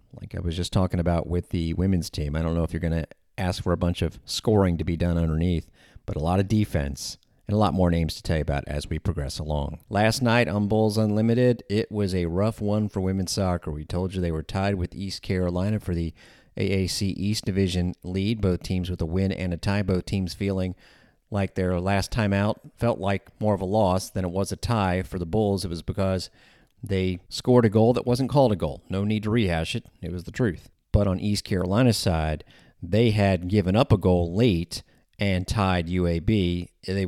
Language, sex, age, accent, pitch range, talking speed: English, male, 40-59, American, 85-105 Hz, 225 wpm